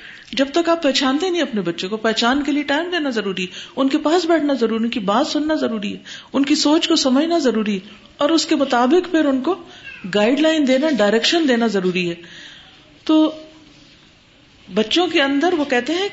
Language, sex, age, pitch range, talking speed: Urdu, female, 50-69, 200-280 Hz, 200 wpm